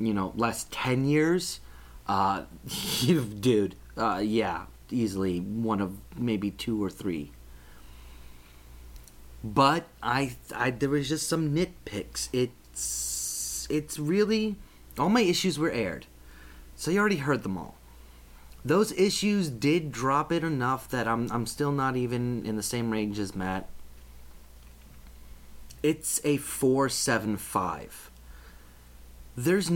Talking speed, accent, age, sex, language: 125 wpm, American, 30-49, male, English